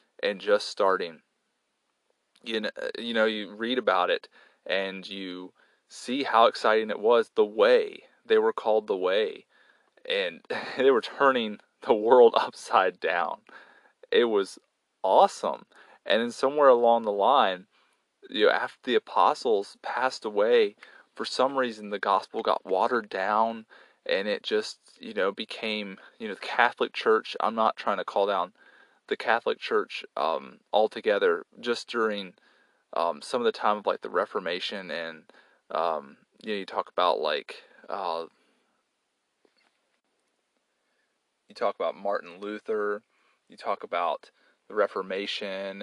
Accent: American